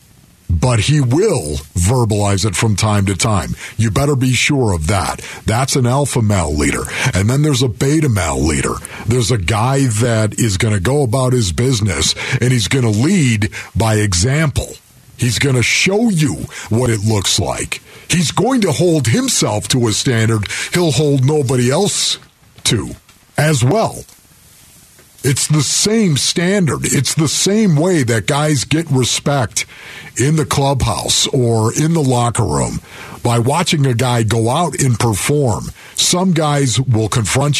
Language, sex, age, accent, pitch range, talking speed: English, male, 50-69, American, 110-150 Hz, 160 wpm